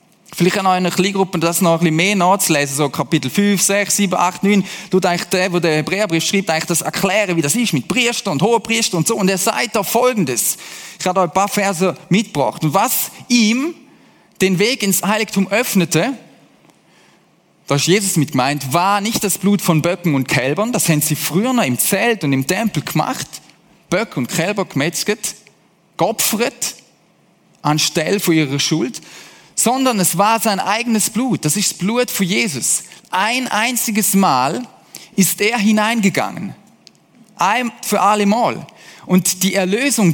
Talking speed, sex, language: 170 wpm, male, German